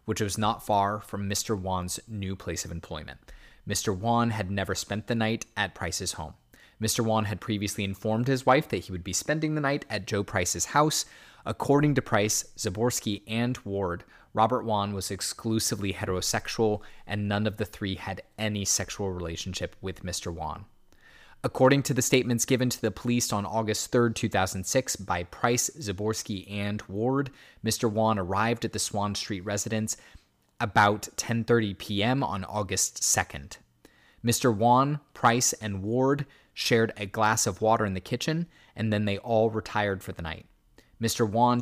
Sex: male